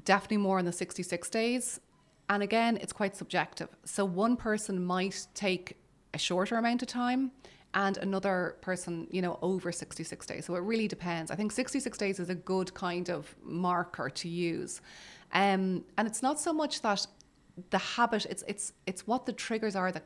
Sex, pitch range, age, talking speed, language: female, 175-205 Hz, 30-49, 185 wpm, English